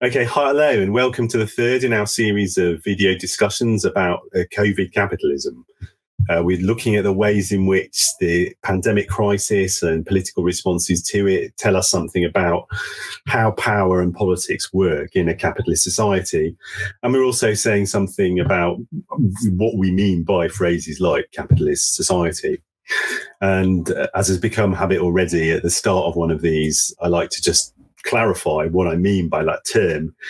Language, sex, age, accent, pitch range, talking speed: English, male, 30-49, British, 90-105 Hz, 170 wpm